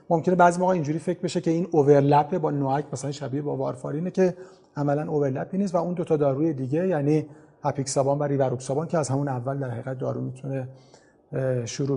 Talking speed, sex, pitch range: 190 wpm, male, 135-170 Hz